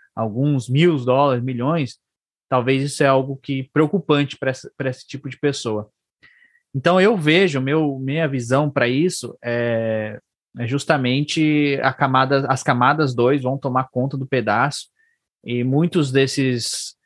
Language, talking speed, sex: Portuguese, 135 wpm, male